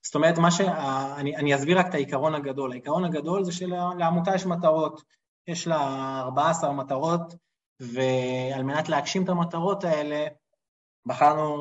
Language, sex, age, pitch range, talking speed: Hebrew, male, 20-39, 130-165 Hz, 135 wpm